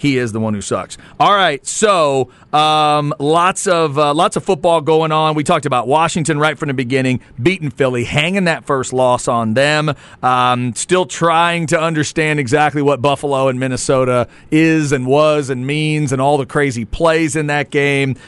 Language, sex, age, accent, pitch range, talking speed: English, male, 40-59, American, 135-165 Hz, 185 wpm